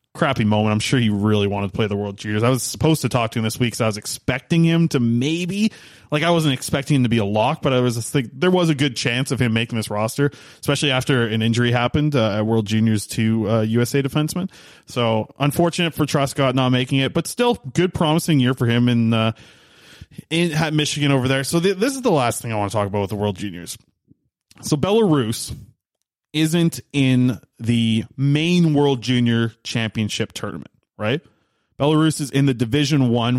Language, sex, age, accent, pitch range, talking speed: English, male, 20-39, American, 110-145 Hz, 210 wpm